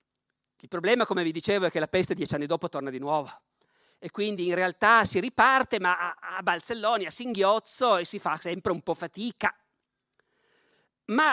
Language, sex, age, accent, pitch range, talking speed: Italian, male, 50-69, native, 165-240 Hz, 180 wpm